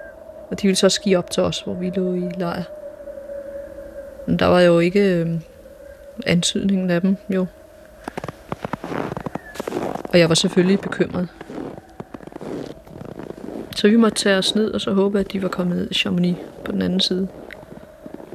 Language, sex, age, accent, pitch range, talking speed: Danish, female, 30-49, native, 180-205 Hz, 155 wpm